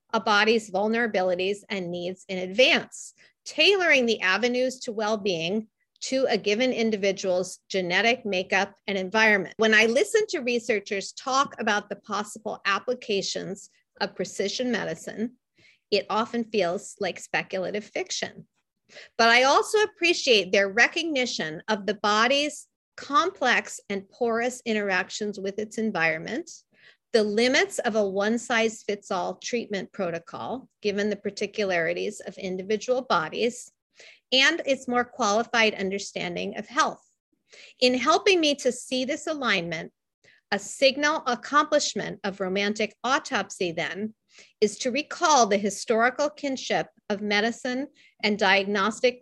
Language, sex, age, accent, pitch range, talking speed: English, female, 40-59, American, 200-250 Hz, 125 wpm